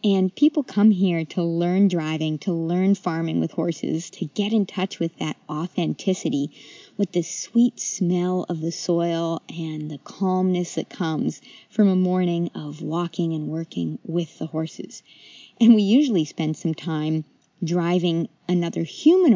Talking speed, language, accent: 155 wpm, English, American